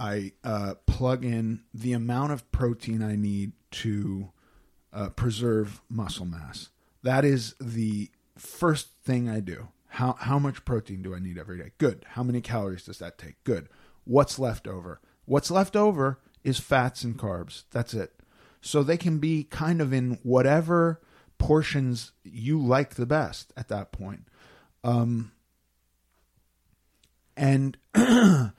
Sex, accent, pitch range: male, American, 100-130 Hz